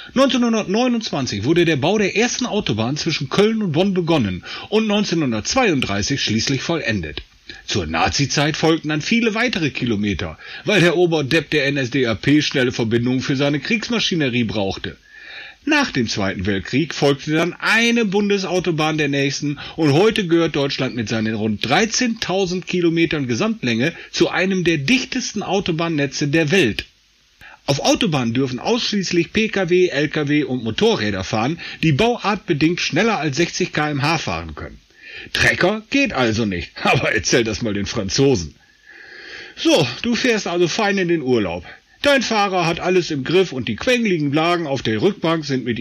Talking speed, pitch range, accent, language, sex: 145 wpm, 130-205 Hz, German, German, male